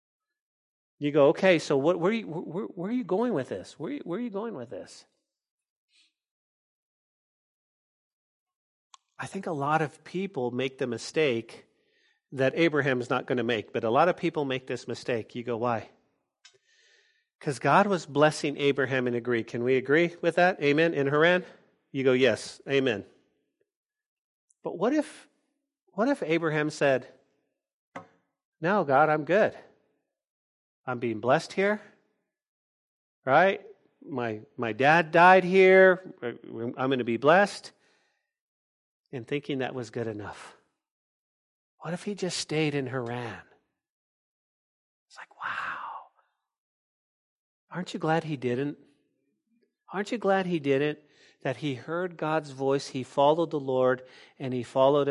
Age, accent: 40-59, American